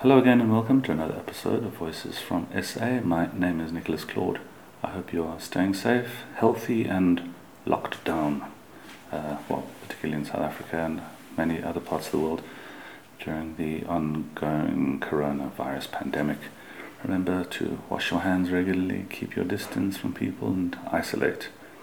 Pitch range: 80-95 Hz